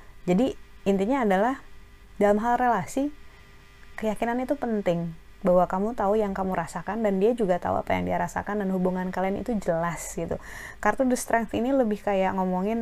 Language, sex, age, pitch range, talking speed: Indonesian, female, 20-39, 175-210 Hz, 170 wpm